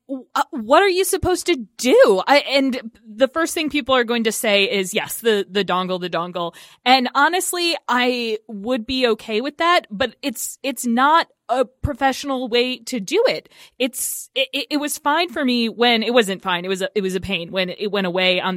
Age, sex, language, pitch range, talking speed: 20-39, female, English, 195-260 Hz, 205 wpm